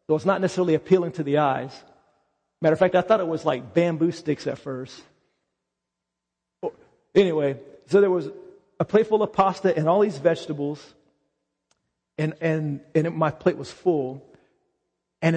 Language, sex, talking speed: English, male, 165 wpm